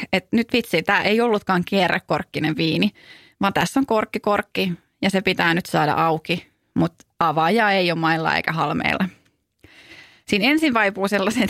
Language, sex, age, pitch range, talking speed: Finnish, female, 30-49, 175-235 Hz, 155 wpm